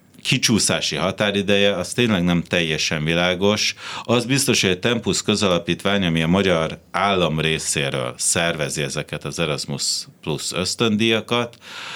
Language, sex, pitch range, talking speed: Hungarian, male, 75-100 Hz, 120 wpm